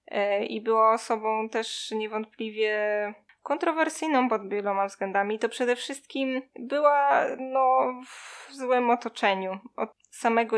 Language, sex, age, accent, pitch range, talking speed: Polish, female, 20-39, native, 200-235 Hz, 100 wpm